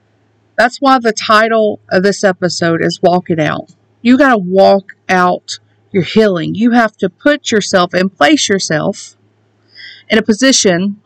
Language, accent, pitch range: English, American, 195-250 Hz